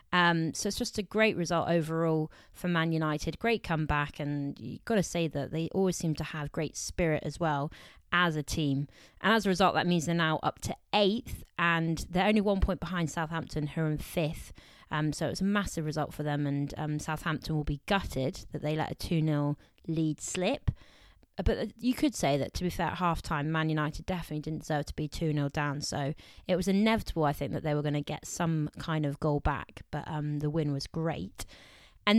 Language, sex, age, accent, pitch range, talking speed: English, female, 20-39, British, 150-185 Hz, 215 wpm